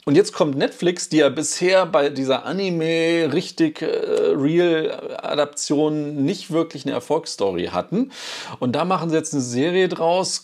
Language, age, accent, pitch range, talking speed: German, 40-59, German, 125-170 Hz, 145 wpm